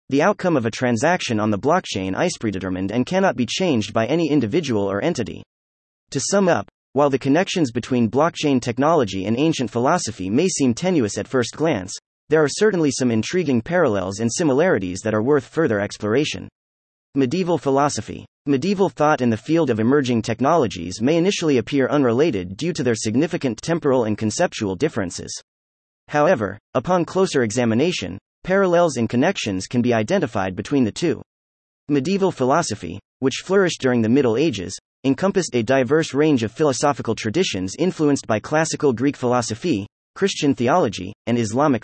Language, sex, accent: English, male, American